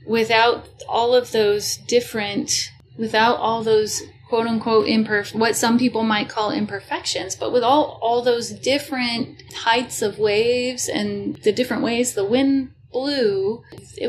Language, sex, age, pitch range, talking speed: English, female, 30-49, 200-235 Hz, 145 wpm